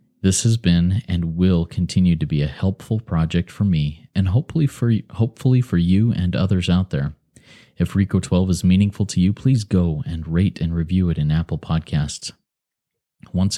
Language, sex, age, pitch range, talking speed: English, male, 30-49, 80-95 Hz, 170 wpm